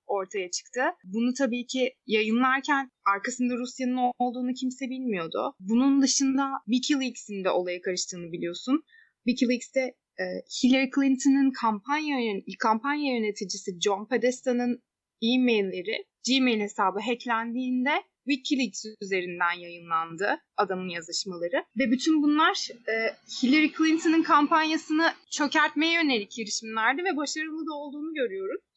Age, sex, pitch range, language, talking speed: 20-39, female, 220-285 Hz, Turkish, 105 wpm